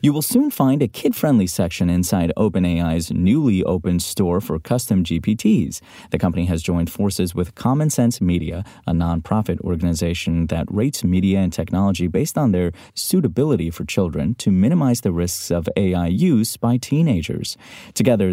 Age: 30-49